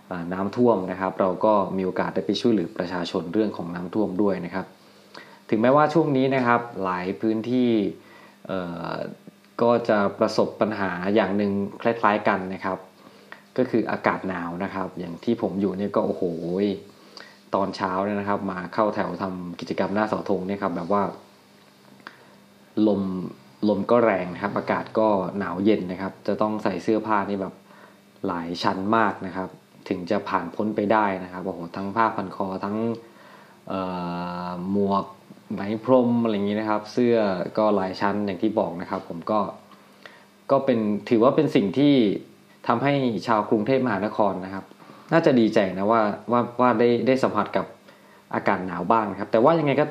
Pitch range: 95-115 Hz